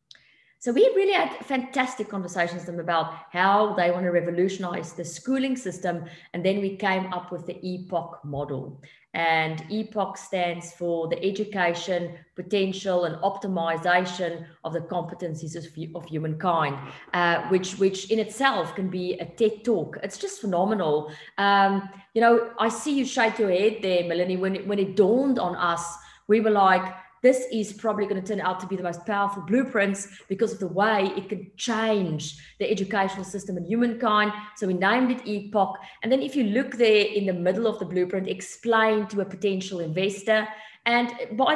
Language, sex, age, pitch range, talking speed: English, female, 30-49, 175-210 Hz, 180 wpm